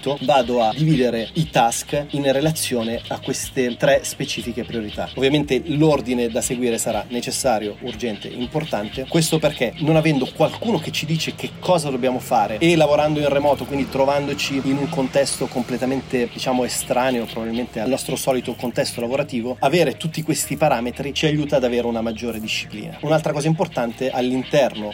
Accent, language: native, Italian